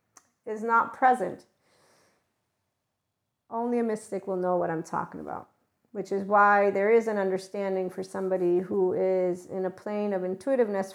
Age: 40-59